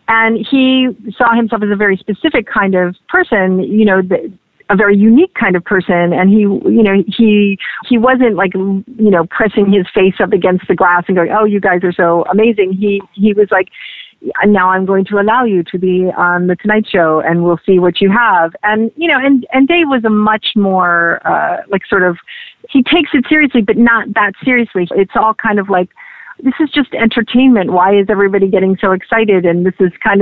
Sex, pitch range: female, 185-225 Hz